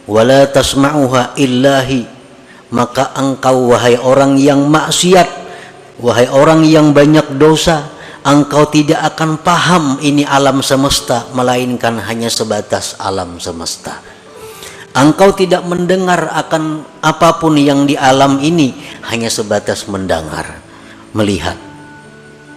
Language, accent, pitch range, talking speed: Indonesian, native, 115-160 Hz, 105 wpm